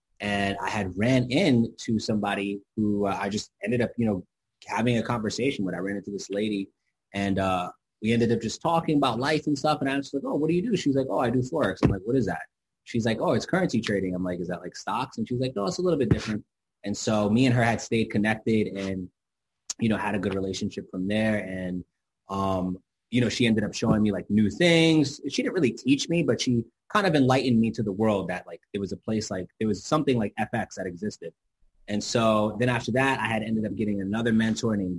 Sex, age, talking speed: male, 20-39, 255 wpm